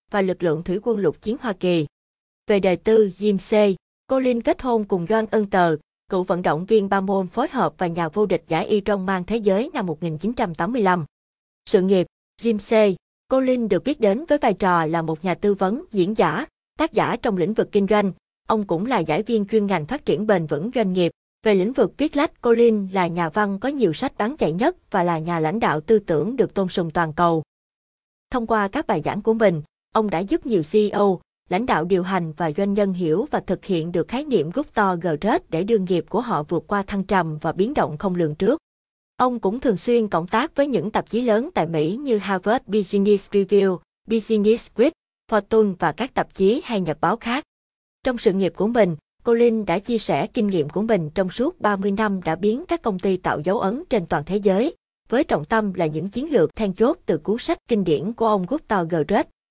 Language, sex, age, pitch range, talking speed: Vietnamese, female, 20-39, 180-225 Hz, 225 wpm